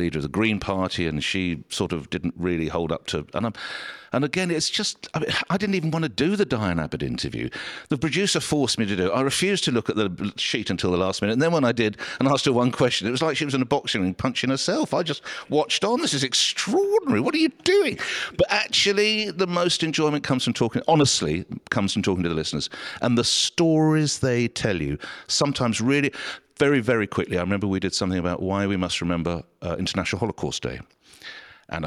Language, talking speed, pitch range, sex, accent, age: English, 230 wpm, 90-140 Hz, male, British, 50-69